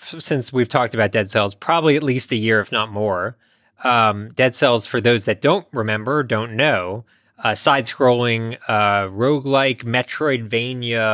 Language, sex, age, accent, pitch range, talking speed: English, male, 20-39, American, 110-145 Hz, 155 wpm